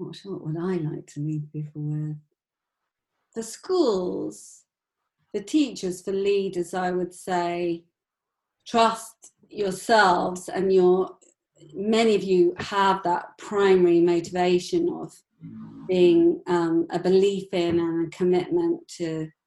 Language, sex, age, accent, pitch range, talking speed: English, female, 40-59, British, 170-205 Hz, 120 wpm